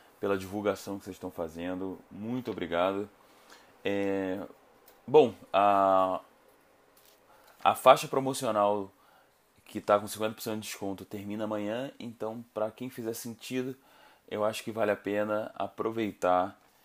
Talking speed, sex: 120 wpm, male